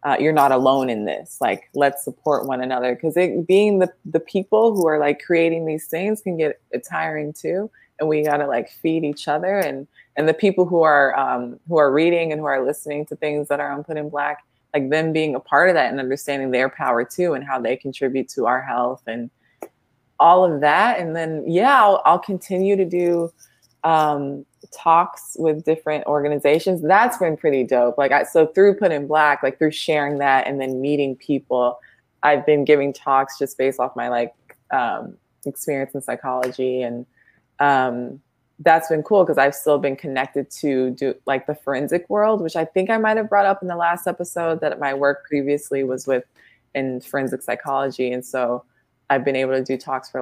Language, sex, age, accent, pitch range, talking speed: English, female, 20-39, American, 130-160 Hz, 205 wpm